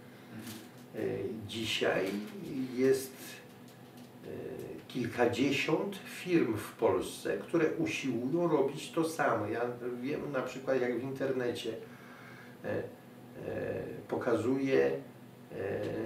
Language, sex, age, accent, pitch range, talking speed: Polish, male, 50-69, native, 110-140 Hz, 70 wpm